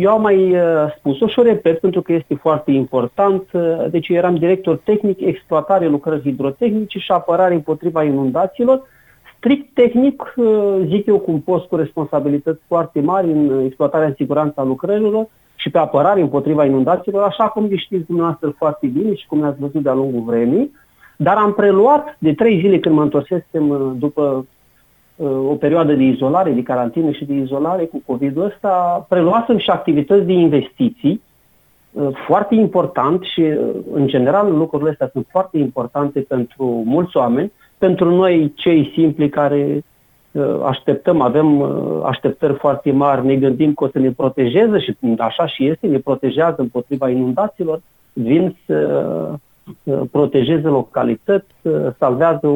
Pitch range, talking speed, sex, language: 140-185 Hz, 145 wpm, male, Romanian